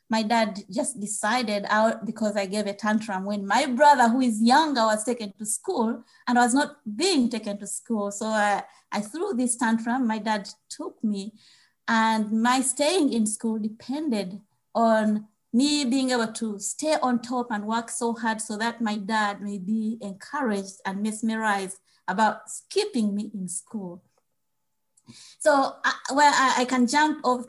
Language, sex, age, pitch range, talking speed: English, female, 30-49, 210-250 Hz, 170 wpm